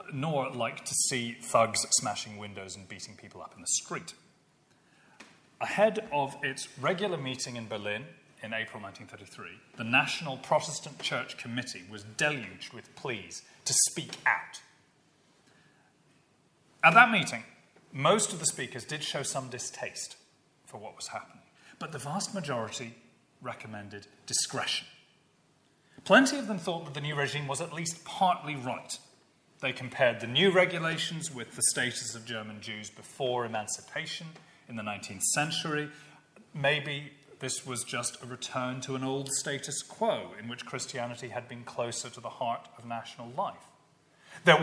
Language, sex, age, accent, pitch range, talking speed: English, male, 30-49, British, 120-155 Hz, 150 wpm